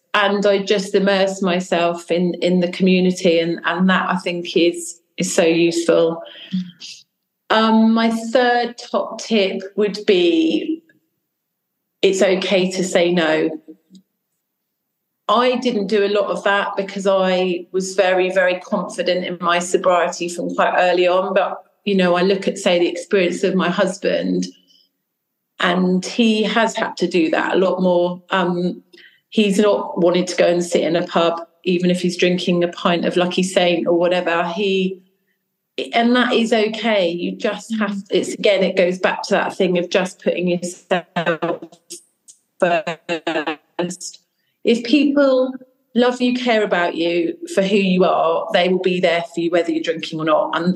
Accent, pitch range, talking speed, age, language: British, 175-205 Hz, 165 wpm, 30-49, English